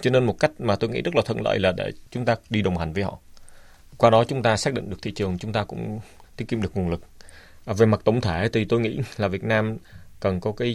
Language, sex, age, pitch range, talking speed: Vietnamese, male, 20-39, 90-110 Hz, 285 wpm